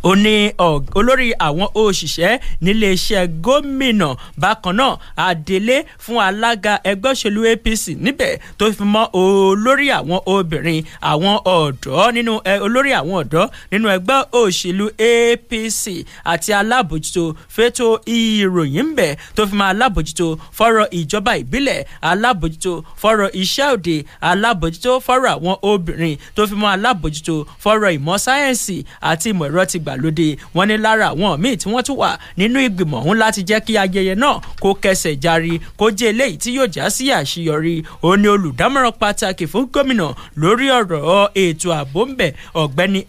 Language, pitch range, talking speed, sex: English, 170-225 Hz, 165 wpm, male